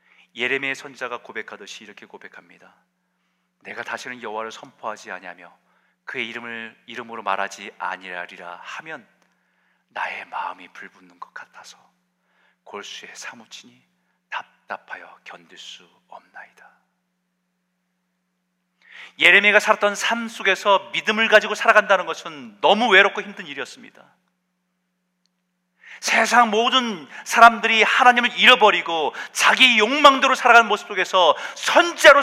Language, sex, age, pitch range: Korean, male, 40-59, 180-230 Hz